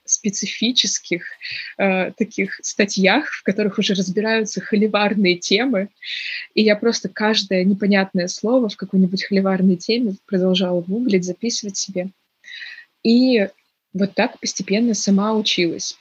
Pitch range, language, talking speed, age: 190-230 Hz, Russian, 110 wpm, 20-39